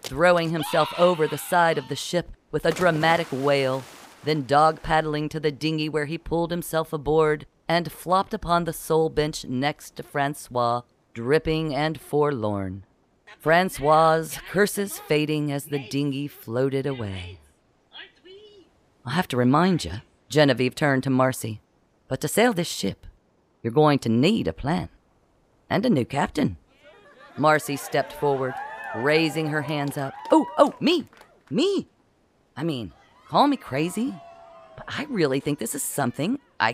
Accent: American